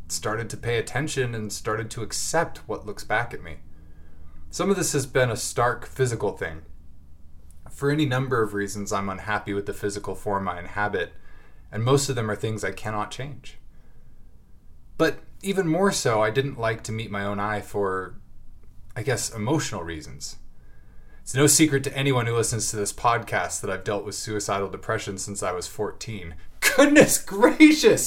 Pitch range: 105-140 Hz